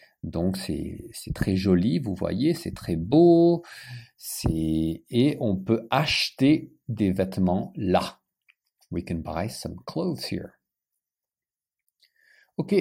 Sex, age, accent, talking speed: male, 50-69, French, 115 wpm